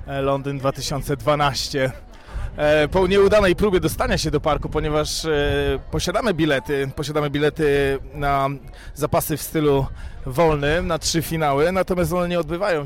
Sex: male